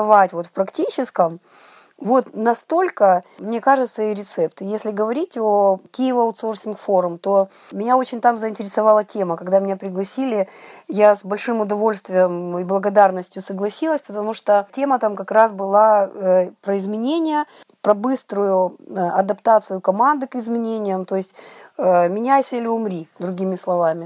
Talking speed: 130 wpm